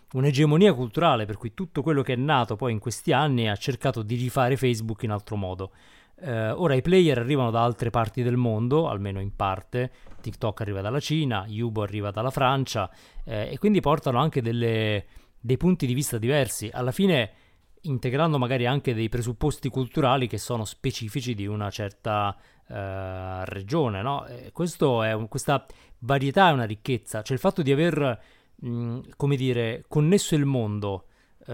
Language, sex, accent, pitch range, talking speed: Italian, male, native, 110-145 Hz, 170 wpm